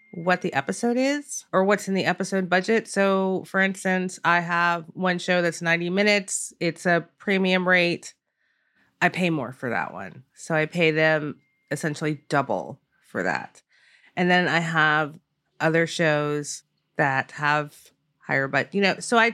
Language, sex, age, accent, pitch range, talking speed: English, female, 30-49, American, 150-200 Hz, 160 wpm